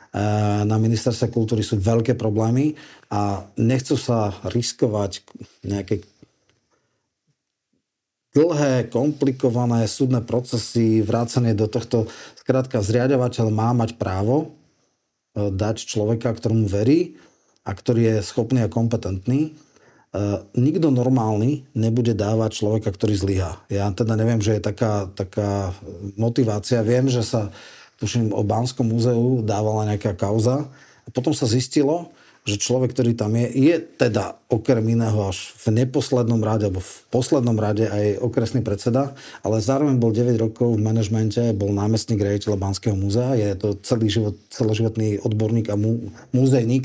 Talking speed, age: 130 wpm, 40-59